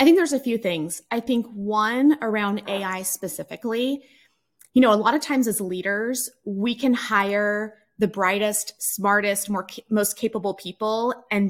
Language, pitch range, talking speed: English, 195-240 Hz, 155 wpm